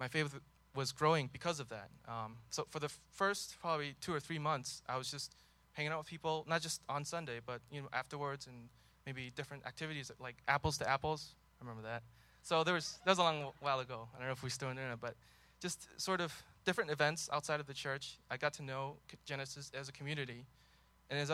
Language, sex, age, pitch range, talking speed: English, male, 20-39, 125-150 Hz, 230 wpm